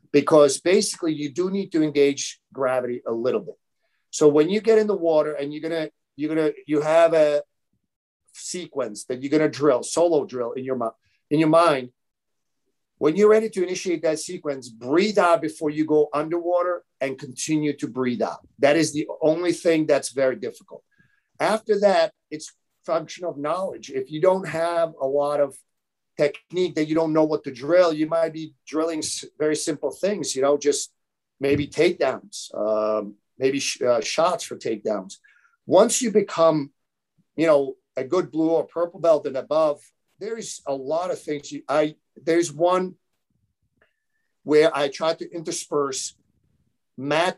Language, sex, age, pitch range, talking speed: English, male, 50-69, 145-175 Hz, 170 wpm